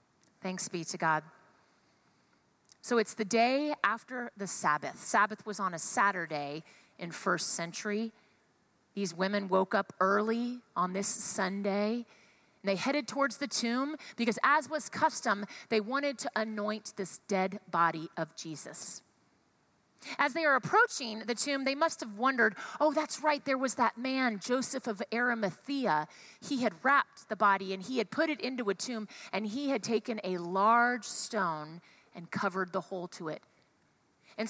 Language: English